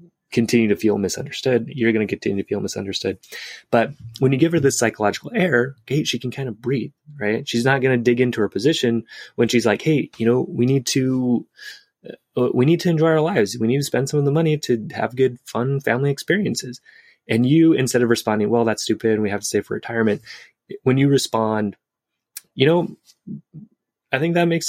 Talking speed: 210 wpm